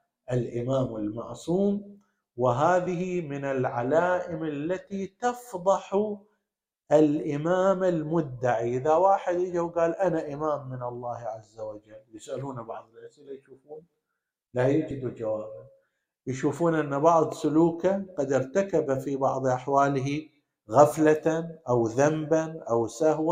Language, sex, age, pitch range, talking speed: Arabic, male, 50-69, 120-170 Hz, 105 wpm